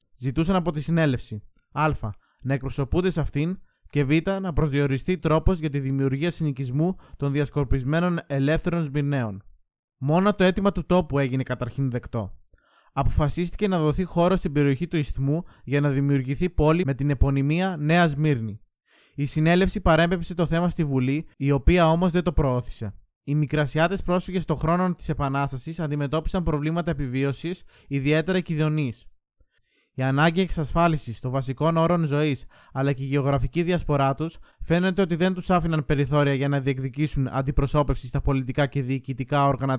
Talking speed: 150 wpm